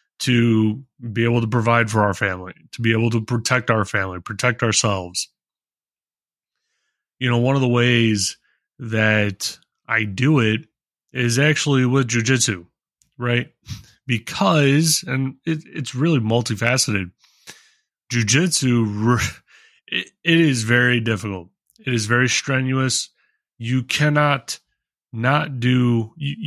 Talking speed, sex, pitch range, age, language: 115 wpm, male, 110-135 Hz, 20-39, English